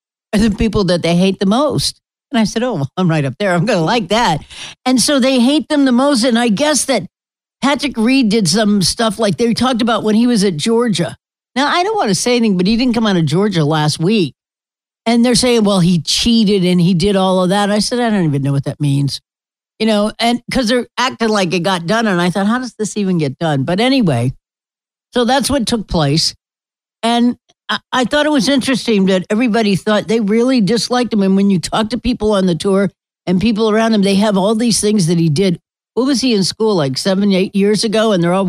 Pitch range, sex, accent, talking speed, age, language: 180-245 Hz, female, American, 245 wpm, 60-79, English